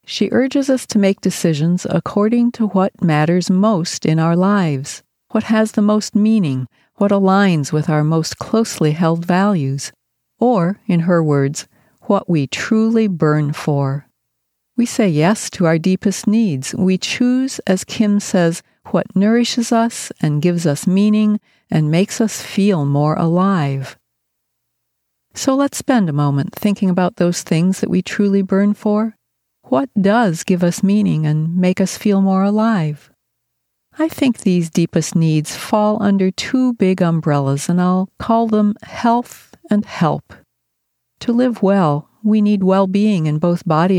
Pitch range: 160-210 Hz